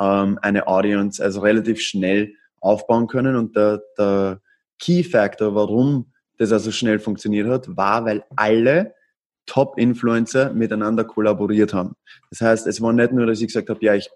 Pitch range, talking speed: 110-130 Hz, 155 wpm